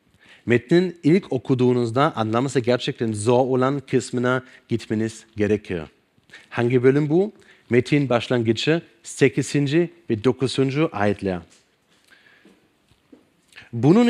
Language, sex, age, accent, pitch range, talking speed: Turkish, male, 30-49, German, 120-160 Hz, 85 wpm